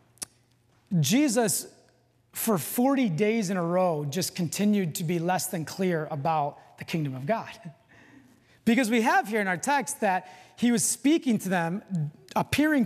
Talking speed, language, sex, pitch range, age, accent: 155 wpm, English, male, 150-225 Hz, 30-49, American